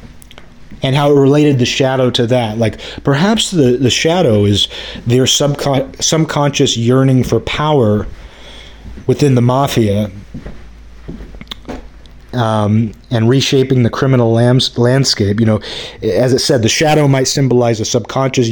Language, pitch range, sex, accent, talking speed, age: English, 115-140 Hz, male, American, 125 wpm, 30-49